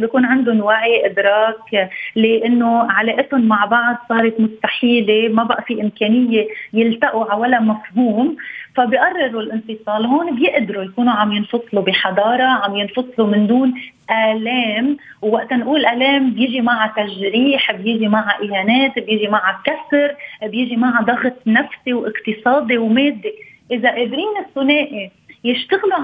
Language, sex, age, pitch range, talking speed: Arabic, female, 30-49, 215-265 Hz, 120 wpm